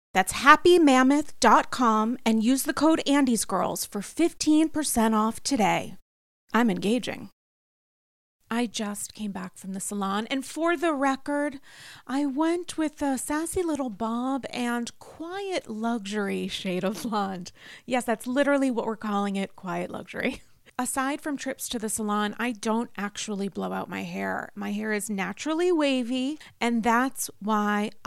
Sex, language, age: female, English, 30-49